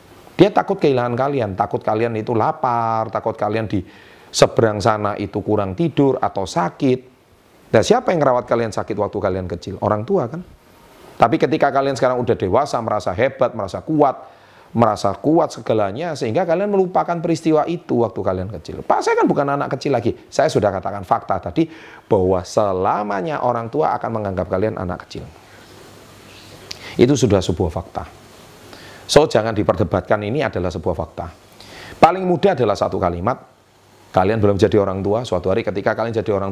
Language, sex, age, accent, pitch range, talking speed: Indonesian, male, 30-49, native, 95-125 Hz, 165 wpm